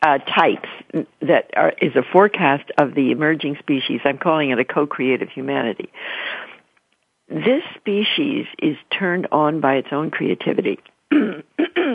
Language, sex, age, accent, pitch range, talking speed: English, female, 60-79, American, 155-225 Hz, 130 wpm